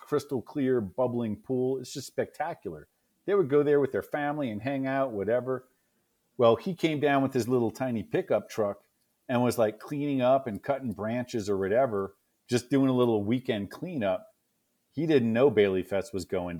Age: 40-59